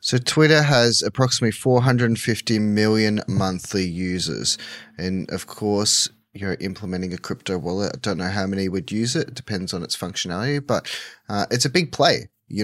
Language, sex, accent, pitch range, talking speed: English, male, Australian, 95-120 Hz, 190 wpm